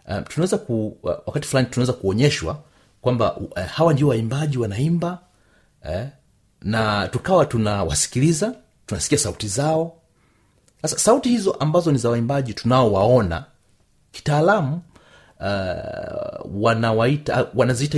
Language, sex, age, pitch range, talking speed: Swahili, male, 30-49, 105-150 Hz, 105 wpm